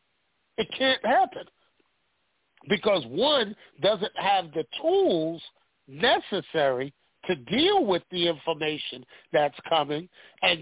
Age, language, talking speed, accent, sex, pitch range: 50-69, English, 100 wpm, American, male, 170-255 Hz